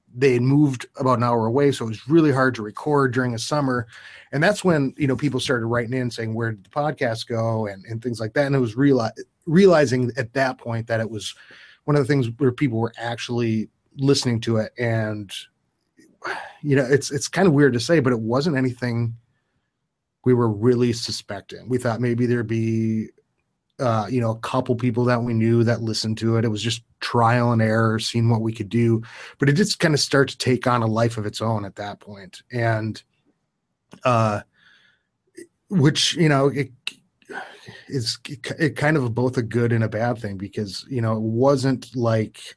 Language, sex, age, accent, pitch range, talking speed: English, male, 30-49, American, 110-135 Hz, 205 wpm